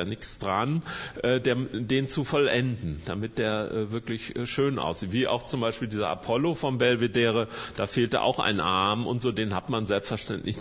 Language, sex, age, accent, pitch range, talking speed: German, male, 40-59, German, 95-125 Hz, 165 wpm